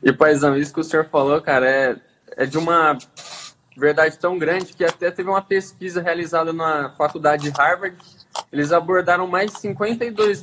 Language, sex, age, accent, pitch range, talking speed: Portuguese, male, 20-39, Brazilian, 160-195 Hz, 175 wpm